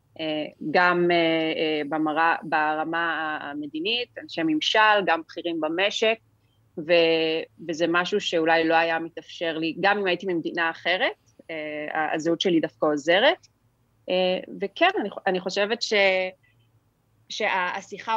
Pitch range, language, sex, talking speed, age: 160-190 Hz, English, female, 100 wpm, 30-49